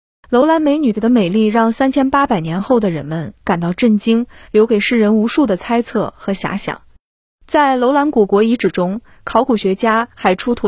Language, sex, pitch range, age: Chinese, female, 205-255 Hz, 20-39